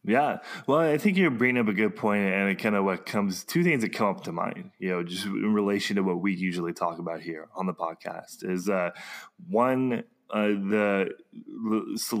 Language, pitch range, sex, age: English, 95-110 Hz, male, 20-39